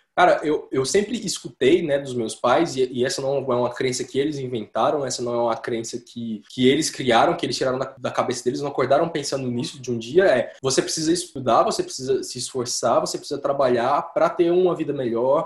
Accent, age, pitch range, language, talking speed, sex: Brazilian, 20-39, 130-185 Hz, Portuguese, 225 wpm, male